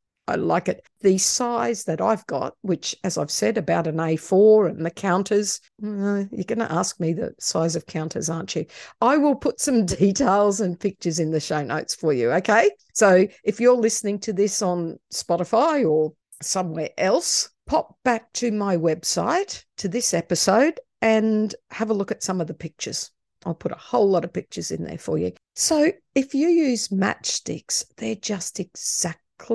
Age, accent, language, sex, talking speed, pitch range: 50-69, Australian, English, female, 185 wpm, 170-230 Hz